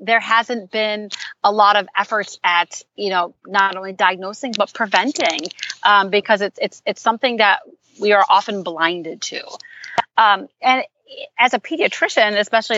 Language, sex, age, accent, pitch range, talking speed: English, female, 30-49, American, 180-225 Hz, 155 wpm